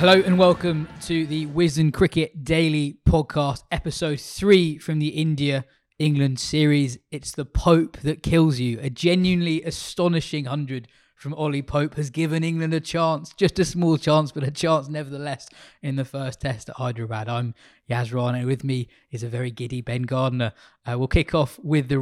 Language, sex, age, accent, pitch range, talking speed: English, male, 20-39, British, 130-155 Hz, 175 wpm